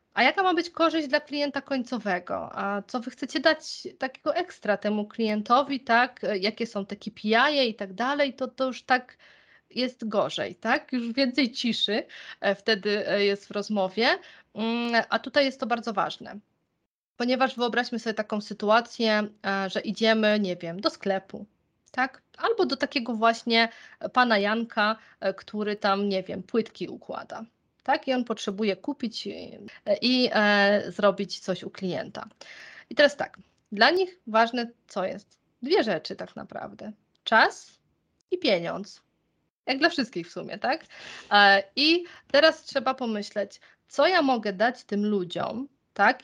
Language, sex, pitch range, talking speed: Polish, female, 210-275 Hz, 150 wpm